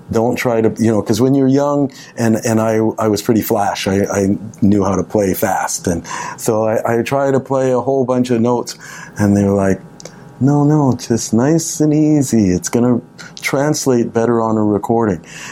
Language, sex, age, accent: English, male, 50-69, American